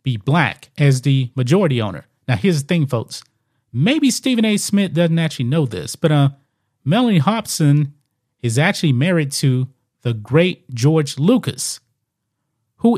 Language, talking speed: English, 150 wpm